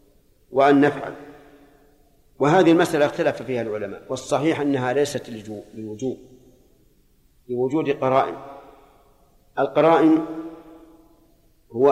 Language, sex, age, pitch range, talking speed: Arabic, male, 50-69, 130-150 Hz, 80 wpm